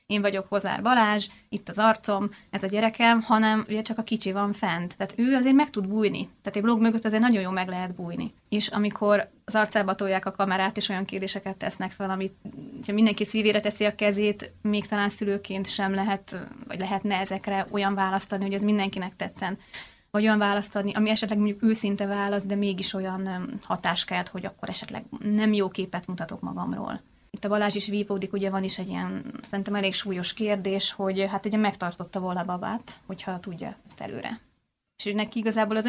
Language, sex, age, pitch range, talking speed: Hungarian, female, 20-39, 195-215 Hz, 185 wpm